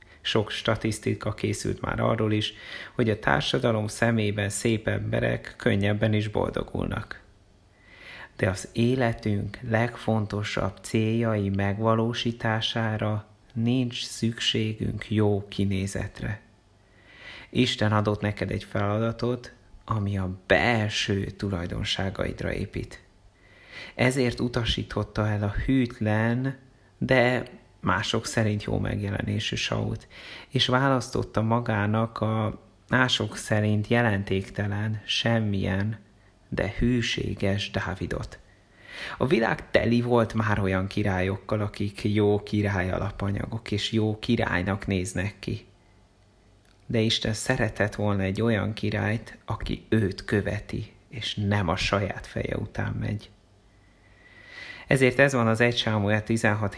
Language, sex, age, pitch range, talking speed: Hungarian, male, 30-49, 100-115 Hz, 100 wpm